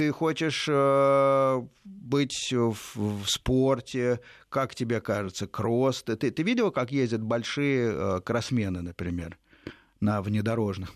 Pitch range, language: 105-145 Hz, Russian